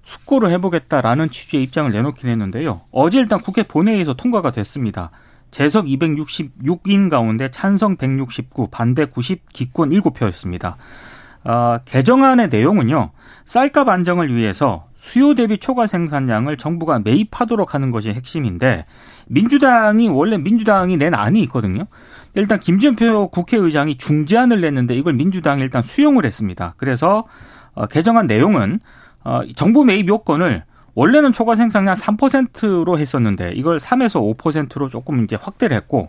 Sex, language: male, Korean